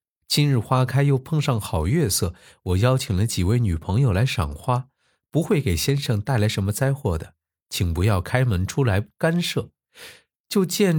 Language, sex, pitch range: Chinese, male, 90-145 Hz